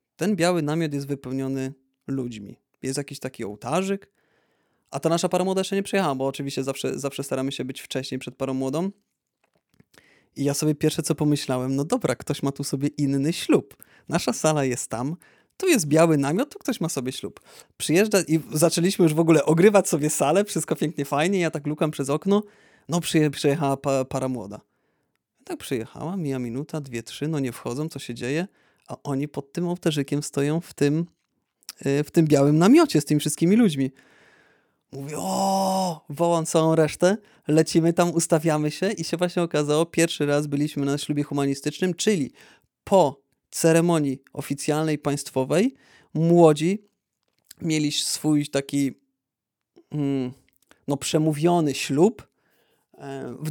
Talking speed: 155 wpm